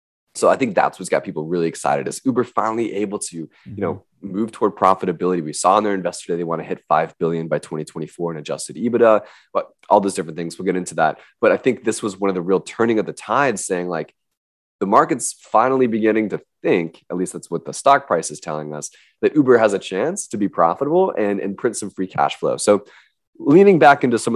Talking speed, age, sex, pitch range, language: 235 wpm, 20-39, male, 85-110 Hz, English